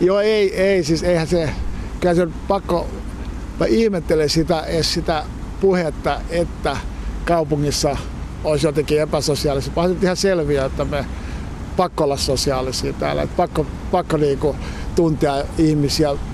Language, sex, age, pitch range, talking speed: Finnish, male, 60-79, 140-175 Hz, 130 wpm